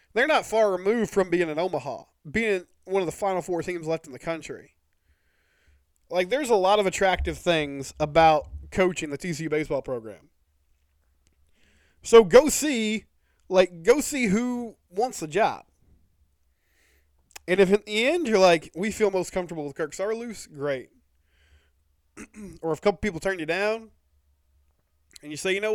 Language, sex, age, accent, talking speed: English, male, 20-39, American, 165 wpm